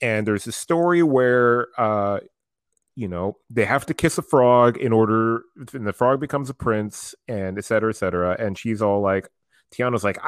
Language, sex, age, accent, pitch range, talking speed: English, male, 30-49, American, 105-140 Hz, 195 wpm